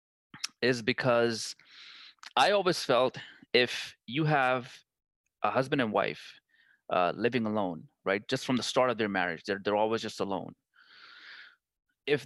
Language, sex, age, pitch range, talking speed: English, male, 30-49, 105-125 Hz, 140 wpm